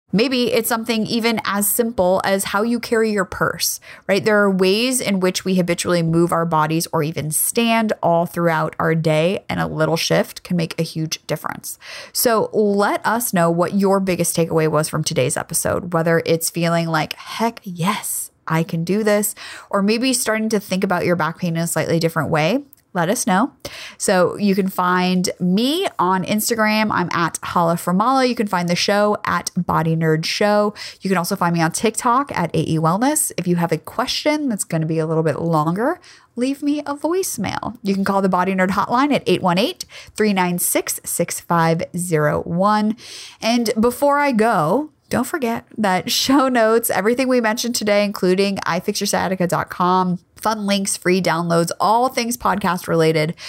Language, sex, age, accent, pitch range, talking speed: English, female, 20-39, American, 170-220 Hz, 175 wpm